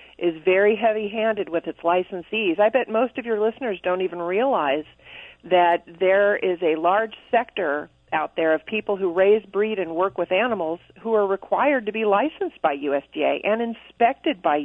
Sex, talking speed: female, 175 wpm